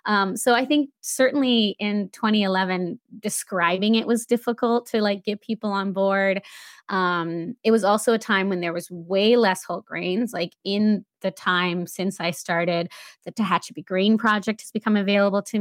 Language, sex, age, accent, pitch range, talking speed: English, female, 20-39, American, 175-225 Hz, 175 wpm